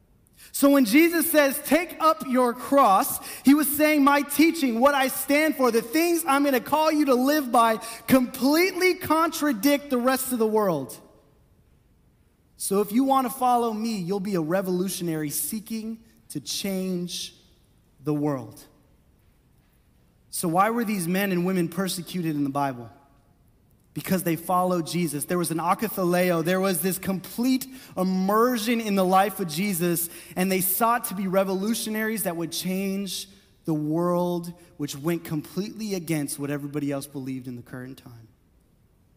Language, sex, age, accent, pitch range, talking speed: English, male, 30-49, American, 175-255 Hz, 155 wpm